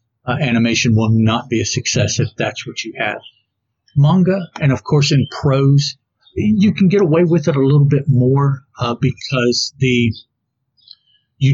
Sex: male